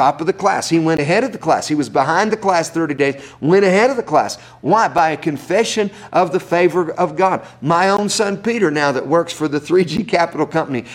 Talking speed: 235 wpm